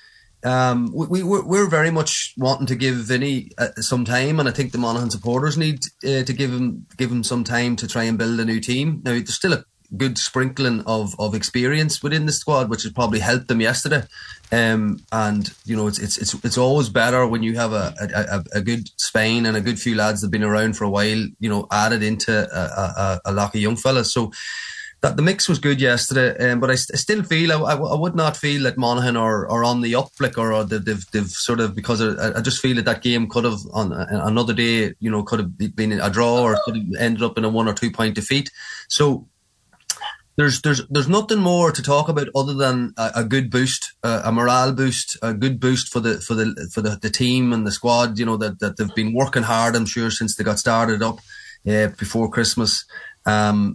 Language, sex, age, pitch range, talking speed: English, male, 20-39, 110-135 Hz, 235 wpm